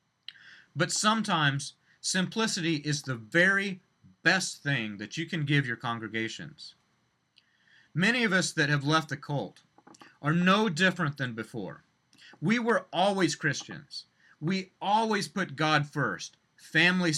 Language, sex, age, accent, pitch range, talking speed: English, male, 30-49, American, 150-200 Hz, 130 wpm